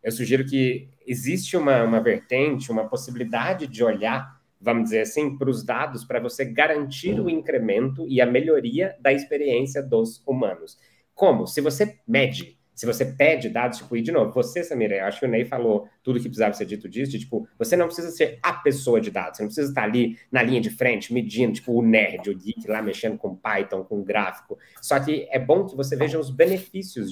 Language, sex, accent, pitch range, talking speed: Portuguese, male, Brazilian, 120-175 Hz, 210 wpm